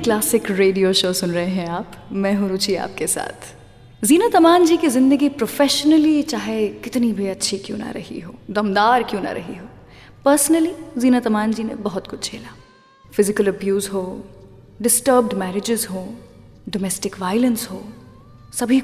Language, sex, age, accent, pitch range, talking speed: English, female, 20-39, Indian, 200-275 Hz, 155 wpm